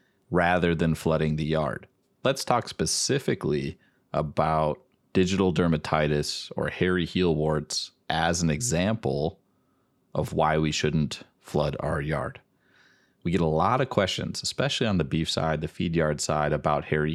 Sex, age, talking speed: male, 30-49, 145 wpm